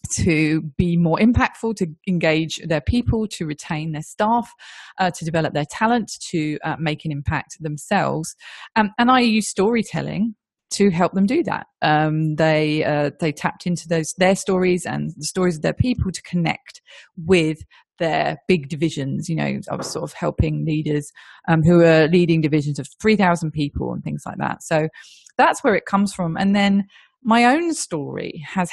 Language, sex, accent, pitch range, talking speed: English, female, British, 155-195 Hz, 180 wpm